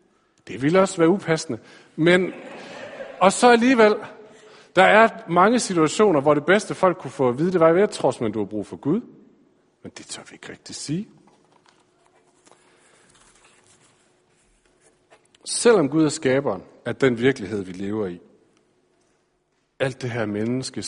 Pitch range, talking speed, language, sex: 120-185 Hz, 150 wpm, Danish, male